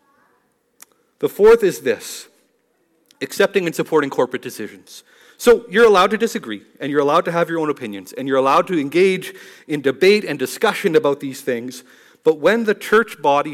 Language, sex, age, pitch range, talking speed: English, male, 40-59, 135-205 Hz, 175 wpm